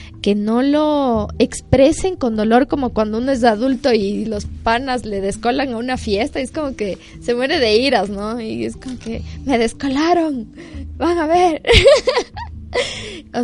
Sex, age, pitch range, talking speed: female, 10-29, 205-255 Hz, 170 wpm